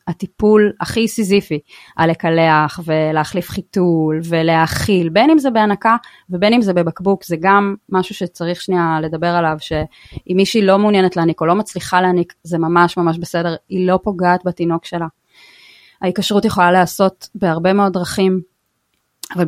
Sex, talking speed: female, 150 wpm